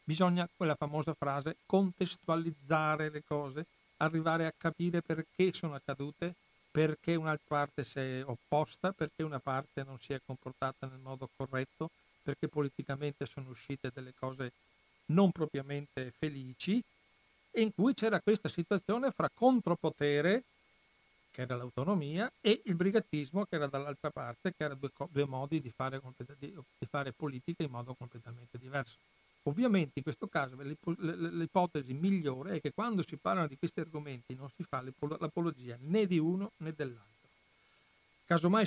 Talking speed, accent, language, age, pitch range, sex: 145 wpm, native, Italian, 60-79, 135-170 Hz, male